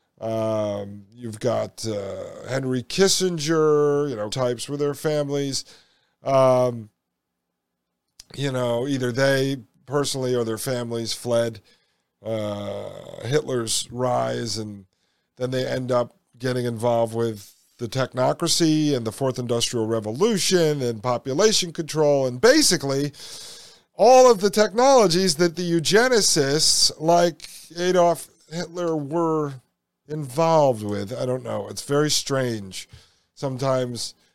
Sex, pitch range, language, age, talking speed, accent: male, 120-150 Hz, English, 40-59, 115 wpm, American